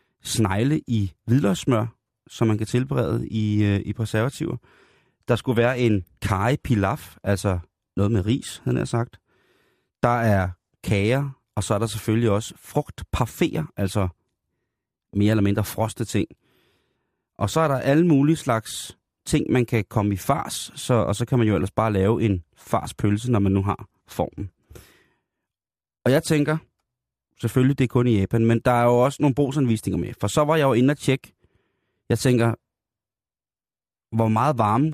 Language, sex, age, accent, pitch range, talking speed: Danish, male, 30-49, native, 100-130 Hz, 165 wpm